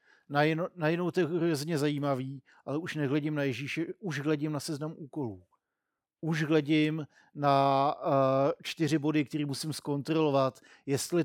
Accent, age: native, 50-69